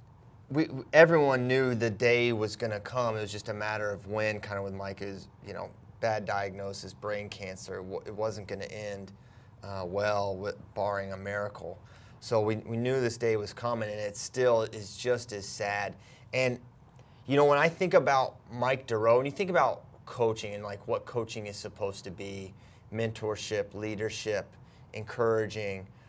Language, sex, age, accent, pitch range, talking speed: English, male, 30-49, American, 105-130 Hz, 175 wpm